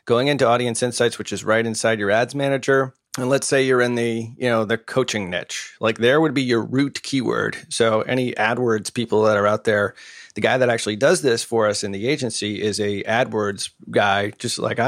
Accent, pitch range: American, 110-130 Hz